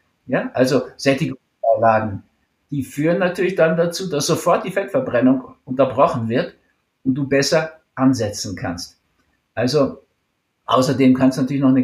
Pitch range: 115-135 Hz